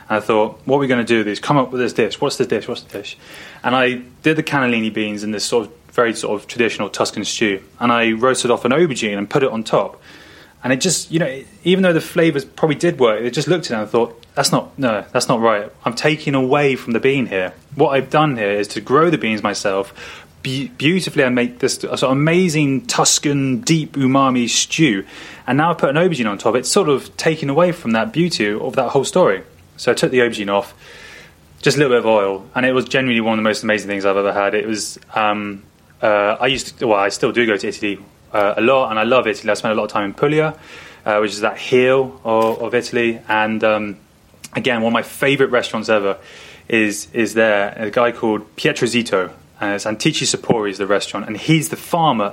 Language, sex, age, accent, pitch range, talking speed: English, male, 20-39, British, 105-135 Hz, 245 wpm